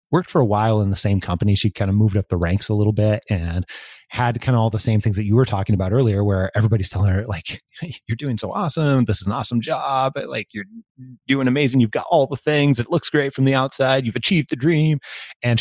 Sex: male